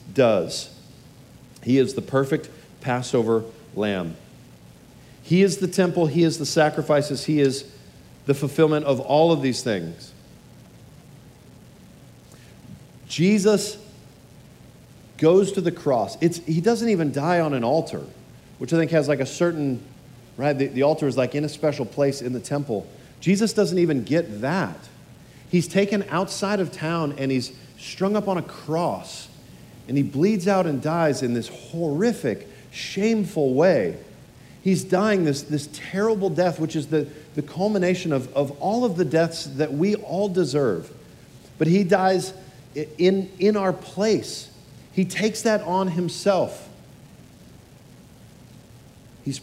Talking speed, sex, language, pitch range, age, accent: 145 wpm, male, English, 135-190 Hz, 40-59, American